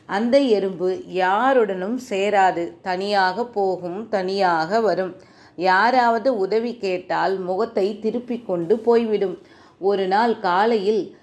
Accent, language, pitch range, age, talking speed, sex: native, Tamil, 185-230 Hz, 30-49, 95 wpm, female